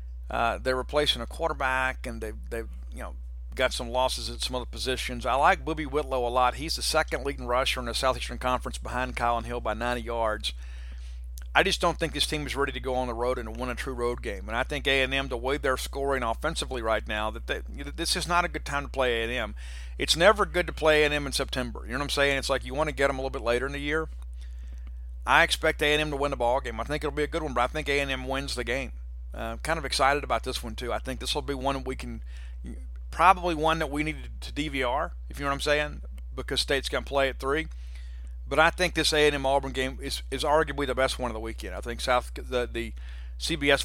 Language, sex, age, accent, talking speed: English, male, 50-69, American, 260 wpm